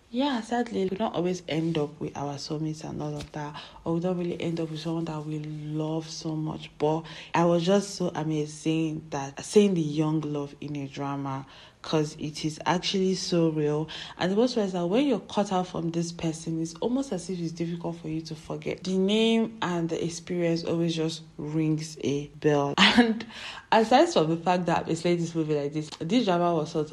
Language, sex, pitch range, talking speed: English, female, 155-180 Hz, 210 wpm